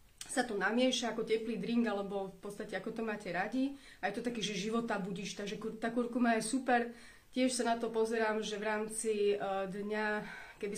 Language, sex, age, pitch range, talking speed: Slovak, female, 30-49, 200-230 Hz, 185 wpm